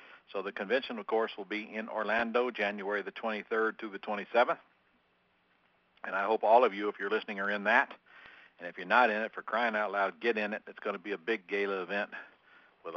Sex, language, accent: male, English, American